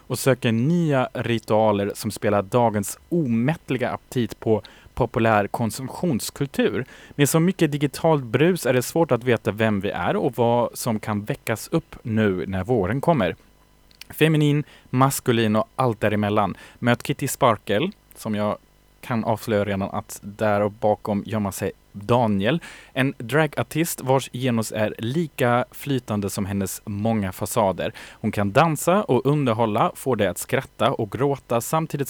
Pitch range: 105-135 Hz